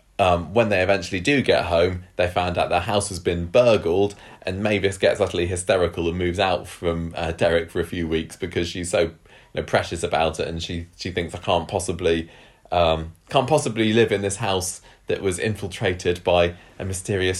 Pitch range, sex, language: 85-105 Hz, male, English